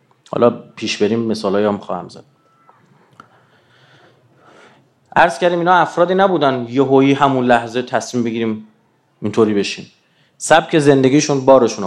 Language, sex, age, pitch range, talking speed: Persian, male, 30-49, 115-140 Hz, 110 wpm